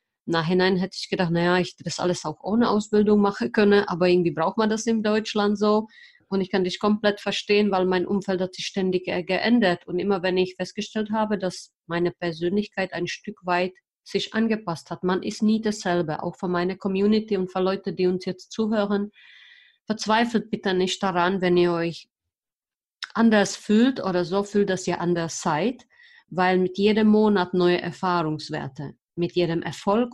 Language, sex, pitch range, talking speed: German, female, 180-215 Hz, 180 wpm